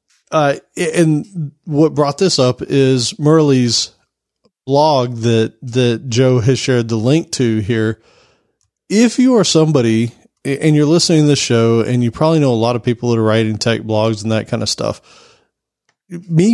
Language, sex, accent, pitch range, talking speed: English, male, American, 115-150 Hz, 170 wpm